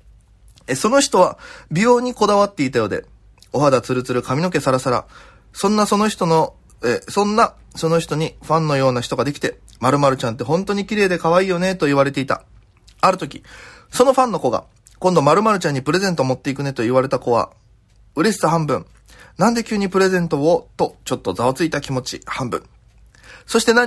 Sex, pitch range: male, 125-185 Hz